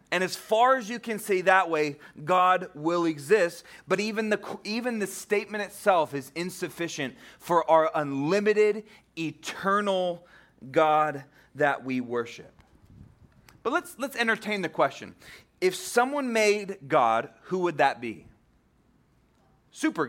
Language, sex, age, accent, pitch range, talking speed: English, male, 30-49, American, 160-215 Hz, 130 wpm